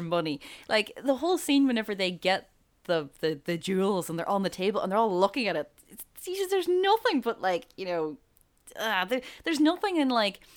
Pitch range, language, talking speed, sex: 170-225 Hz, English, 215 wpm, female